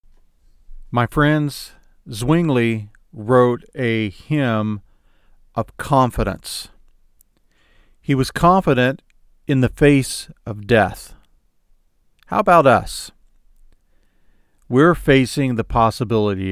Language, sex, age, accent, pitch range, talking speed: English, male, 50-69, American, 110-135 Hz, 85 wpm